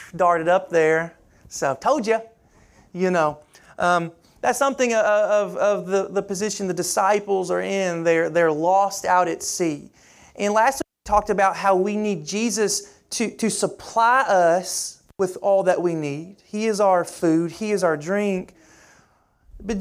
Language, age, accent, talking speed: English, 30-49, American, 165 wpm